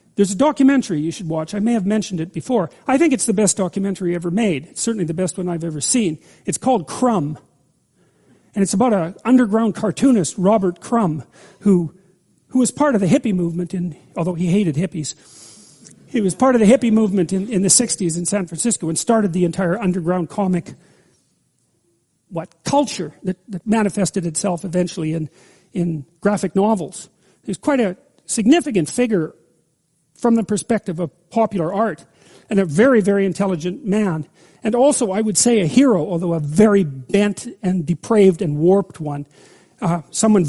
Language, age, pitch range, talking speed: English, 40-59, 170-215 Hz, 175 wpm